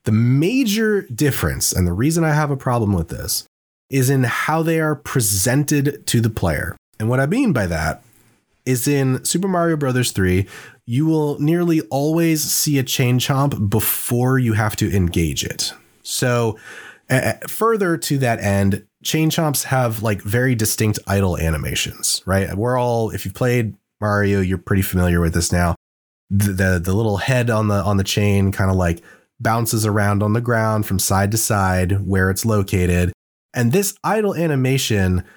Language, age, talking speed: English, 20-39, 175 wpm